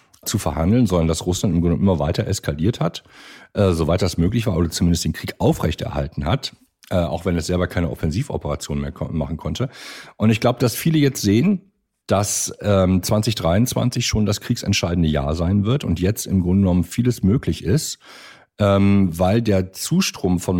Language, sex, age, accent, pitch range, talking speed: German, male, 50-69, German, 85-110 Hz, 180 wpm